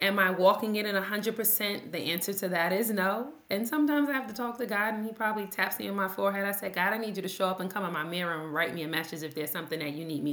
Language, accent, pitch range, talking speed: English, American, 165-225 Hz, 320 wpm